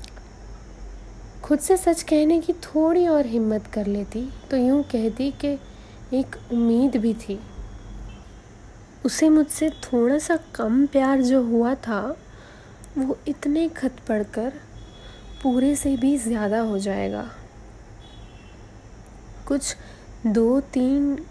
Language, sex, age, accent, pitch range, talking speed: Hindi, female, 30-49, native, 195-280 Hz, 115 wpm